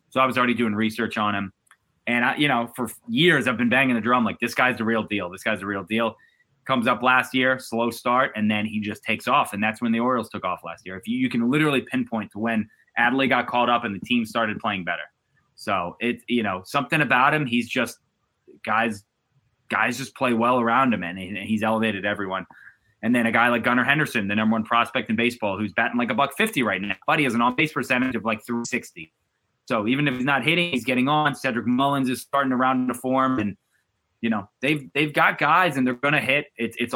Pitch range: 115-135 Hz